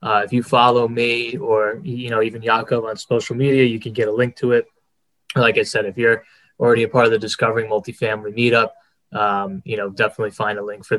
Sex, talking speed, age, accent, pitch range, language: male, 225 wpm, 10-29, American, 110-130 Hz, English